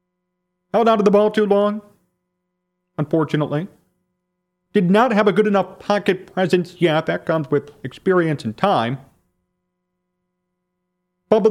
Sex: male